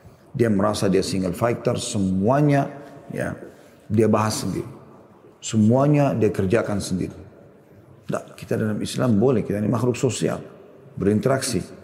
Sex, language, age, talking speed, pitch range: male, Indonesian, 40-59, 120 wpm, 100-125 Hz